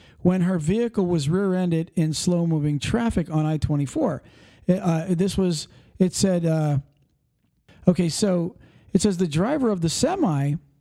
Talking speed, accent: 135 wpm, American